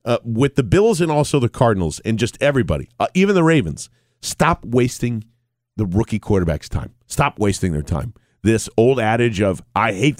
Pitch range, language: 115-145 Hz, English